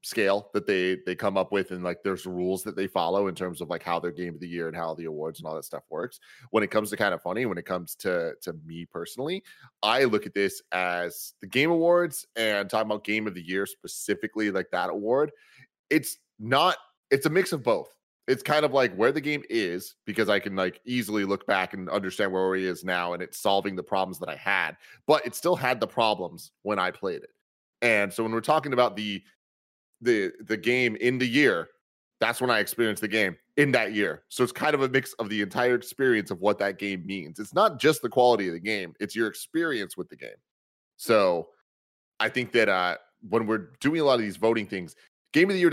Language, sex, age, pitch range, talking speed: English, male, 30-49, 95-125 Hz, 240 wpm